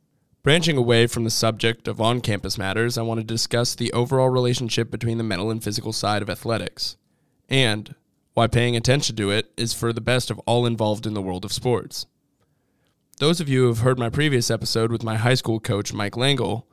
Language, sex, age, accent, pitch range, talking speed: English, male, 20-39, American, 110-125 Hz, 205 wpm